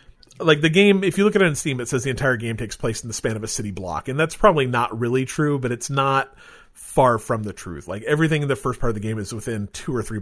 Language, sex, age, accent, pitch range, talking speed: English, male, 40-59, American, 110-140 Hz, 300 wpm